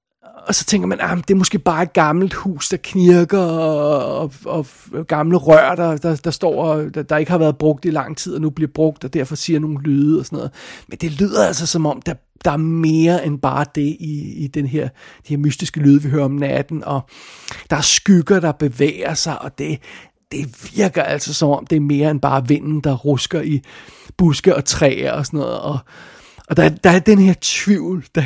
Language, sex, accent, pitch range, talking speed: Danish, male, native, 145-170 Hz, 230 wpm